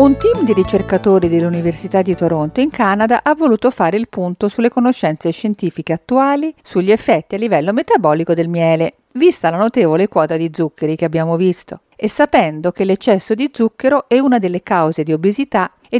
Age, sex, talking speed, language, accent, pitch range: 50-69, female, 175 wpm, Italian, native, 170-250 Hz